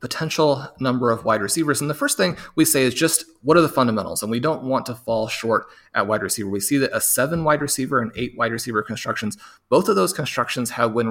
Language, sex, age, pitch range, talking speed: English, male, 30-49, 120-150 Hz, 245 wpm